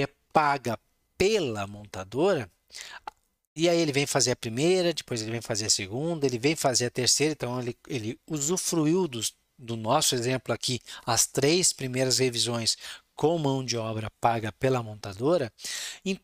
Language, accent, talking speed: Portuguese, Brazilian, 155 wpm